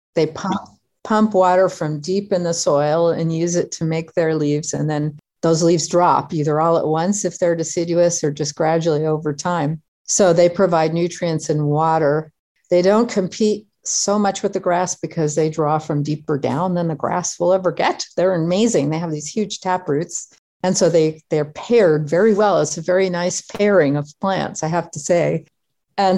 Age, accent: 50-69, American